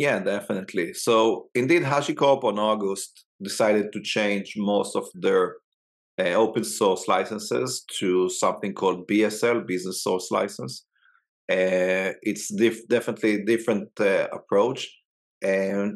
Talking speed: 130 wpm